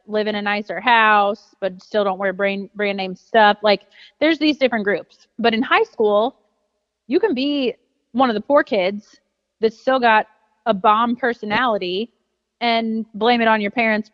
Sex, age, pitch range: female, 30-49, 200-235 Hz